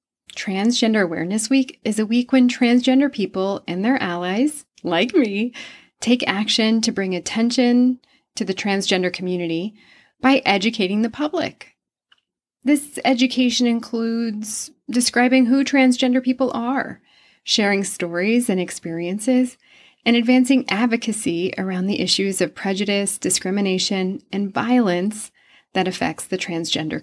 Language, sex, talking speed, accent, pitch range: English, female, 120 wpm, American, 185-250 Hz